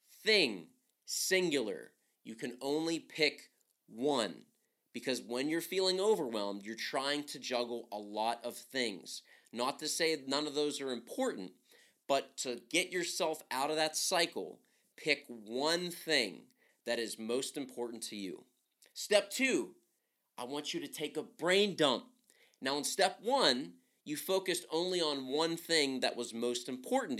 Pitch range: 135-200 Hz